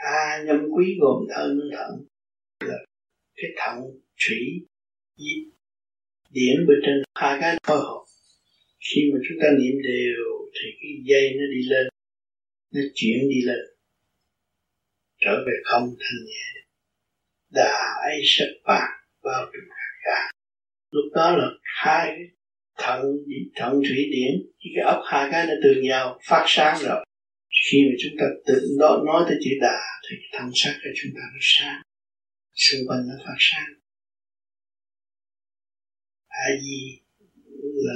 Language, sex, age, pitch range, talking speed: Vietnamese, male, 60-79, 100-145 Hz, 145 wpm